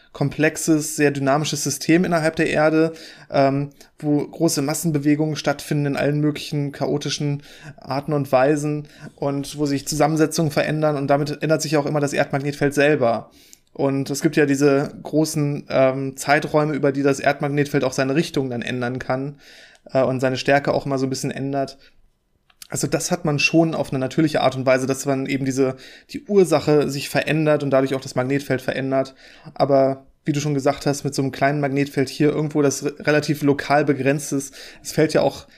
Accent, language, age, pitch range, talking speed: German, German, 20-39, 135-150 Hz, 180 wpm